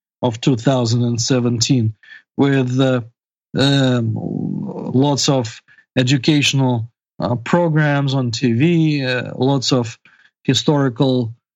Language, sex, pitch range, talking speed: English, male, 130-155 Hz, 100 wpm